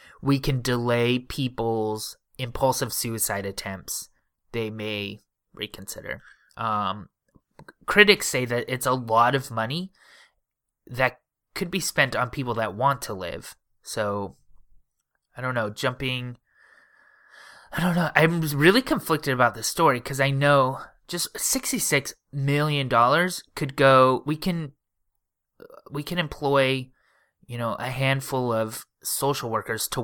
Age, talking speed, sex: 20-39, 130 wpm, male